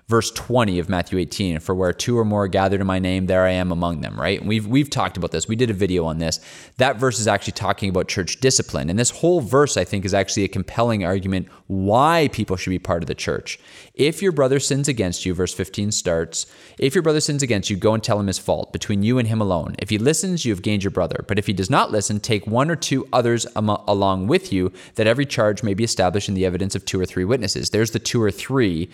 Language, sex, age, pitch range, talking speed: English, male, 20-39, 95-130 Hz, 260 wpm